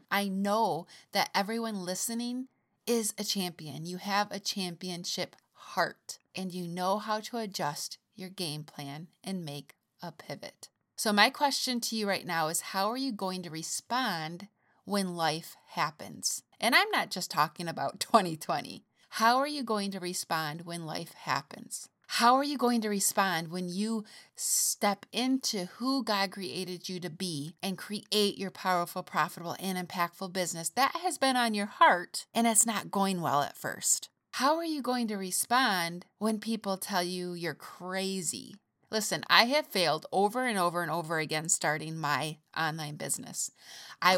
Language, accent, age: English, American, 30-49